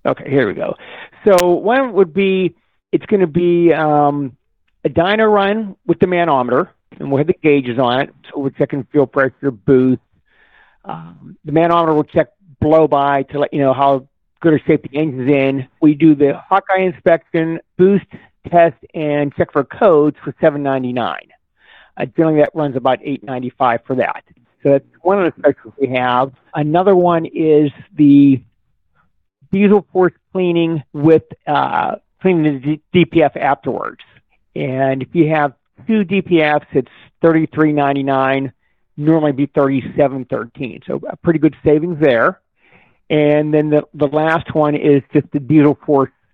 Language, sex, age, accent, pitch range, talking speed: English, male, 50-69, American, 135-170 Hz, 165 wpm